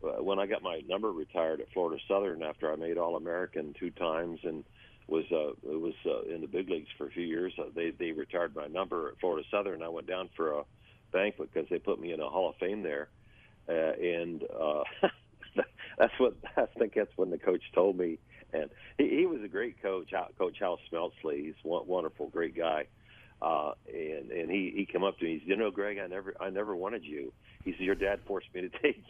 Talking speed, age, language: 220 wpm, 50-69, English